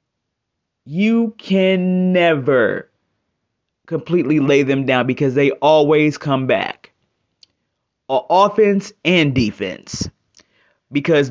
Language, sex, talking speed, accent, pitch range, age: English, male, 85 wpm, American, 145-190 Hz, 20-39